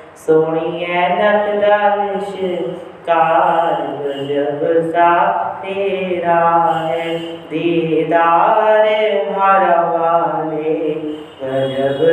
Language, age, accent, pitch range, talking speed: English, 30-49, Indian, 160-175 Hz, 60 wpm